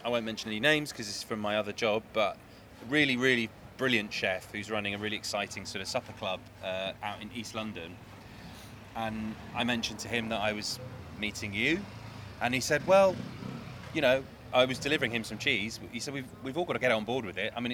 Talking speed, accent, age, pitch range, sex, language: 225 wpm, British, 20-39, 105-120 Hz, male, English